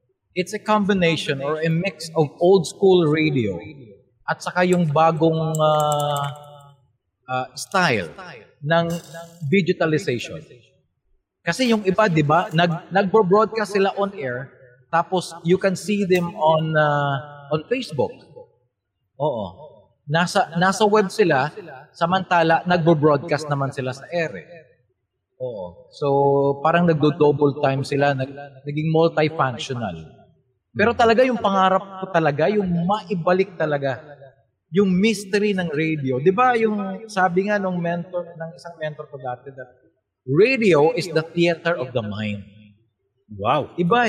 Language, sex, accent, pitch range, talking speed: Filipino, male, native, 145-200 Hz, 125 wpm